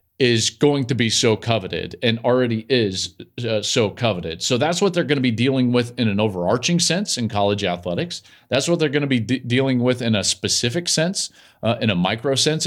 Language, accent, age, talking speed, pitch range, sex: English, American, 40-59, 215 wpm, 105-155 Hz, male